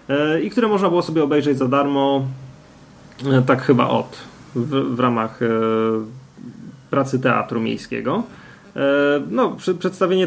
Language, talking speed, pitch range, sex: Polish, 105 wpm, 130-150 Hz, male